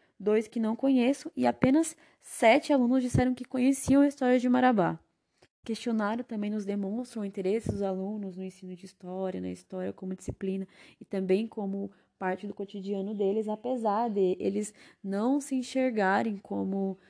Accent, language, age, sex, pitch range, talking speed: Brazilian, Portuguese, 20-39, female, 190-230 Hz, 160 wpm